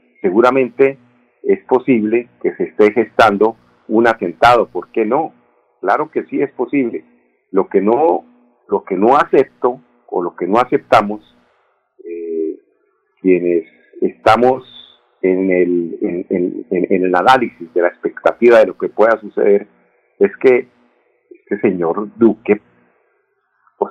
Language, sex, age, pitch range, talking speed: Spanish, male, 50-69, 85-125 Hz, 135 wpm